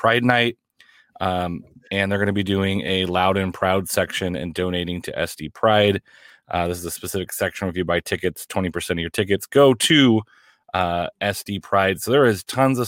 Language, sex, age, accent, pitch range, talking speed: English, male, 30-49, American, 95-105 Hz, 200 wpm